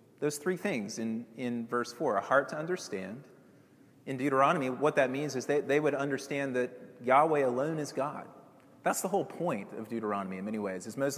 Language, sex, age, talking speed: English, male, 30-49, 200 wpm